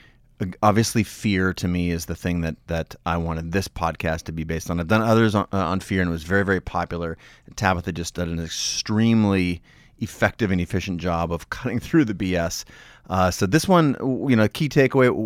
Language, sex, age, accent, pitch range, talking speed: English, male, 30-49, American, 90-115 Hz, 205 wpm